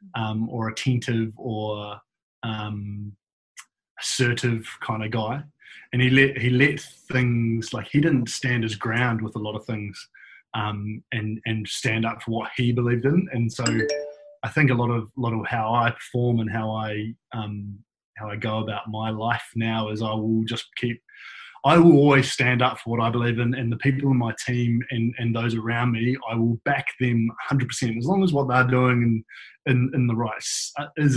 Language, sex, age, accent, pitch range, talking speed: English, male, 20-39, Australian, 110-125 Hz, 200 wpm